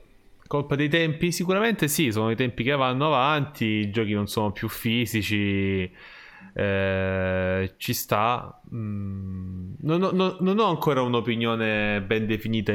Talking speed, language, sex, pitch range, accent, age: 135 wpm, Italian, male, 90-115 Hz, native, 20-39